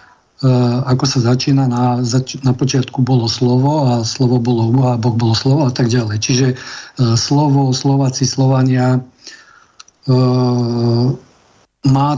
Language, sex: Slovak, male